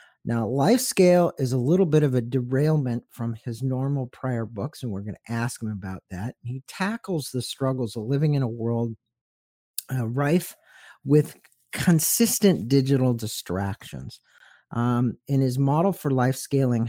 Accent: American